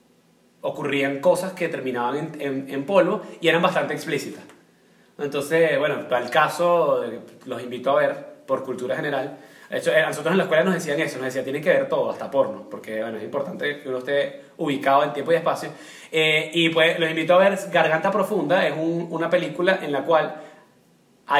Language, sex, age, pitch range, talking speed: Spanish, male, 20-39, 150-190 Hz, 195 wpm